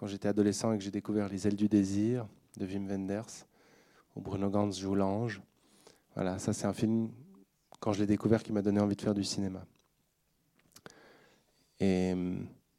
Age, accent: 20-39, French